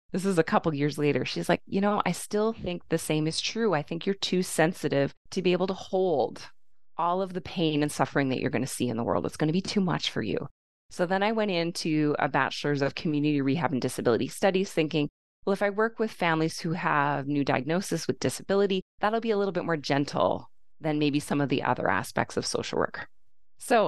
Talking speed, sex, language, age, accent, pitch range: 235 wpm, female, English, 20-39, American, 145-185 Hz